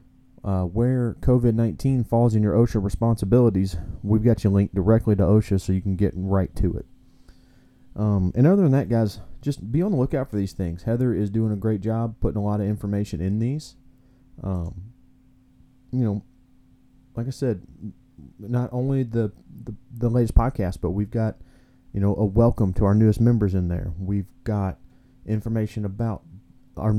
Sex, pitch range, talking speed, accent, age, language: male, 100-125 Hz, 180 wpm, American, 30-49, English